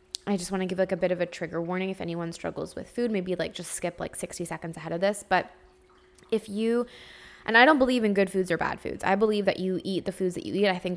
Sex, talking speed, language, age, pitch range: female, 285 wpm, English, 10-29, 170-195 Hz